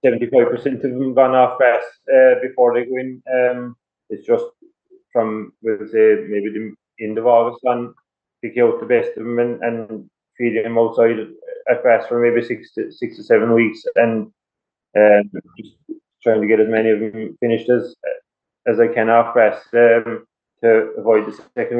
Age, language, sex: 20-39, English, male